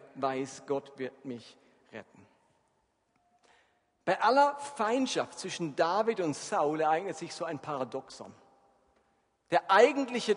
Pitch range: 135-205 Hz